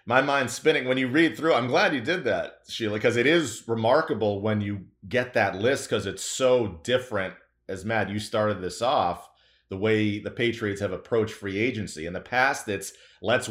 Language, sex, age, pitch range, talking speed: English, male, 30-49, 105-130 Hz, 200 wpm